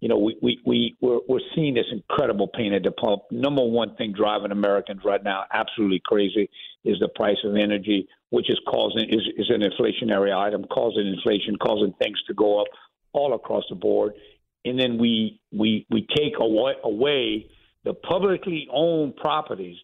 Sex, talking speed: male, 170 wpm